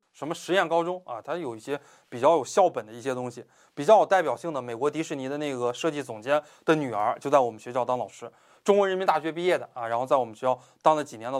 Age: 20-39